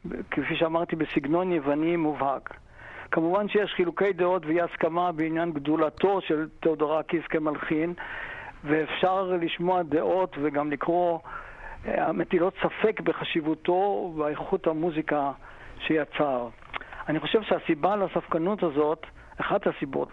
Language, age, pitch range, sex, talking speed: Hebrew, 50-69, 155-185 Hz, male, 100 wpm